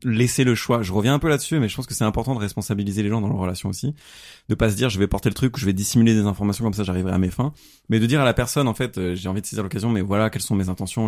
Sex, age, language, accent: male, 30-49, French, French